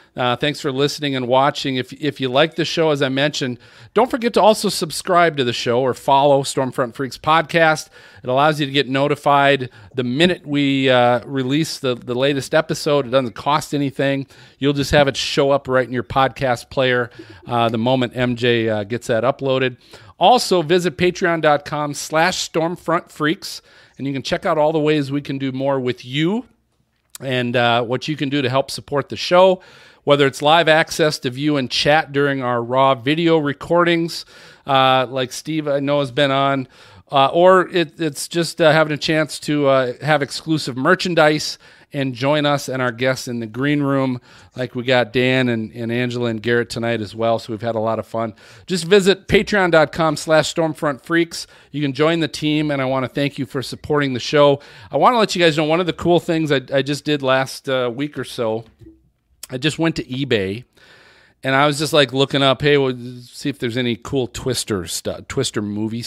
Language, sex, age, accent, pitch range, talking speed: English, male, 40-59, American, 125-155 Hz, 205 wpm